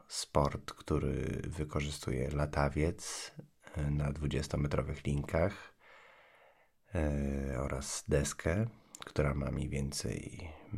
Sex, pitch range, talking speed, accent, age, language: male, 75-95 Hz, 85 wpm, native, 30-49, Polish